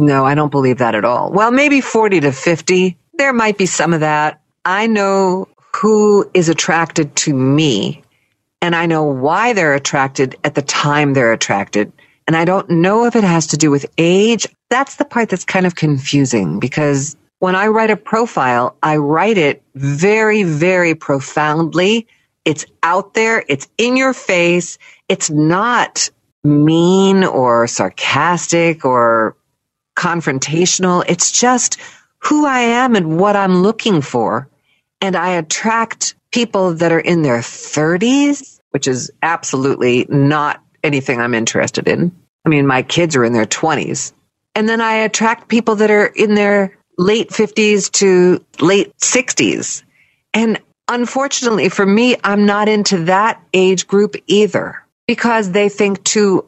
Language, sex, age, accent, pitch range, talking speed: English, female, 50-69, American, 145-215 Hz, 155 wpm